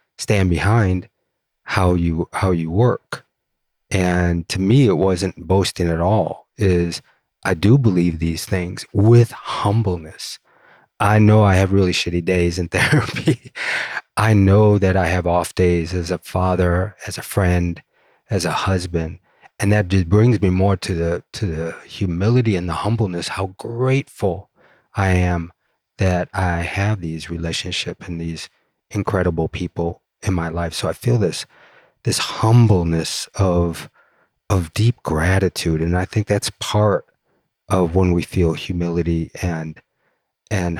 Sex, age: male, 30-49